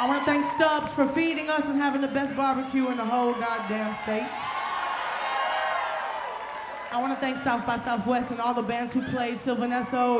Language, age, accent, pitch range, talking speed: English, 20-39, American, 240-315 Hz, 200 wpm